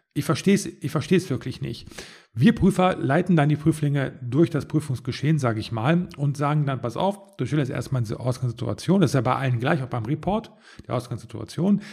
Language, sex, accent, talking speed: German, male, German, 210 wpm